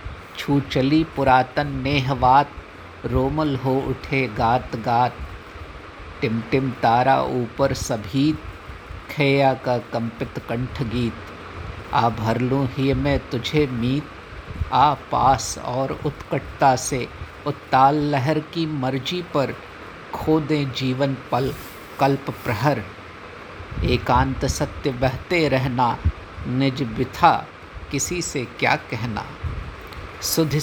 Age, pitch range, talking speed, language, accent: 50-69, 110-140 Hz, 100 wpm, Hindi, native